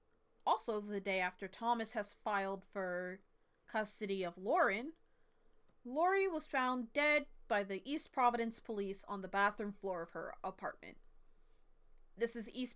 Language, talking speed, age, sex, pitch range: English, 140 wpm, 30-49, female, 200-265 Hz